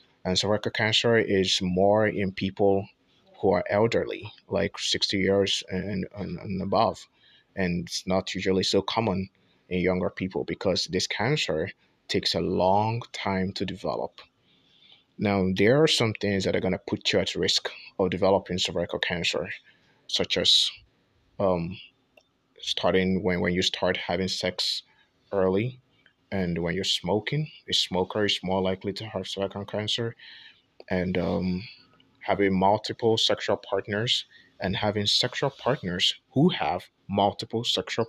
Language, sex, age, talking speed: English, male, 20-39, 140 wpm